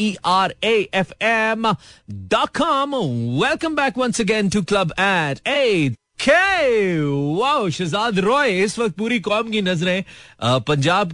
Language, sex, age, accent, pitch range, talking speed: Hindi, male, 30-49, native, 130-190 Hz, 100 wpm